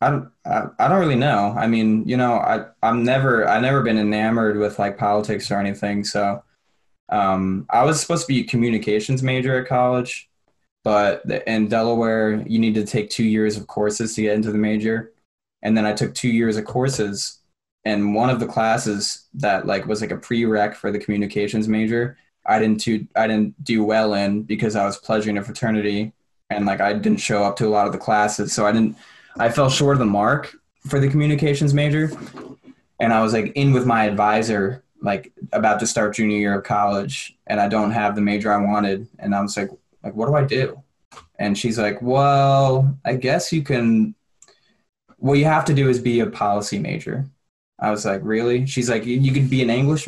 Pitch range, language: 105-125 Hz, English